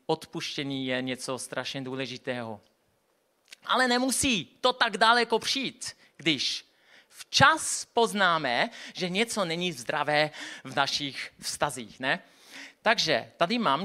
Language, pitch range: Czech, 155-230 Hz